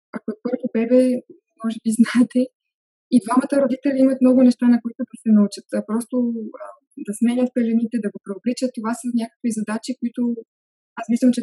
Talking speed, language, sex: 185 wpm, Bulgarian, female